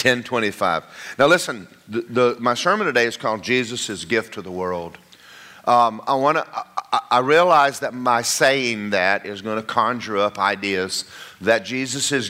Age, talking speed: 50-69, 165 wpm